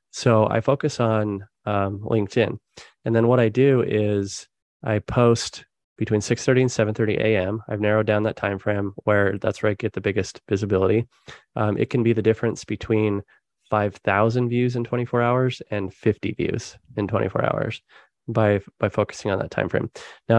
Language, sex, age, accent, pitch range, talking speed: English, male, 20-39, American, 105-115 Hz, 175 wpm